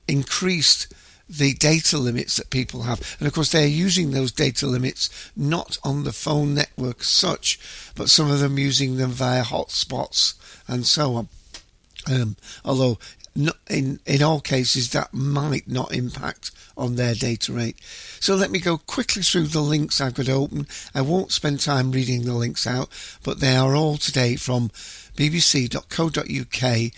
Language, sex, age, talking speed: English, male, 60-79, 160 wpm